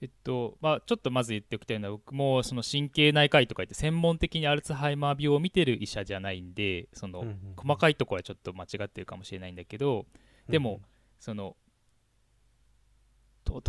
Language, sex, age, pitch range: Japanese, male, 20-39, 105-145 Hz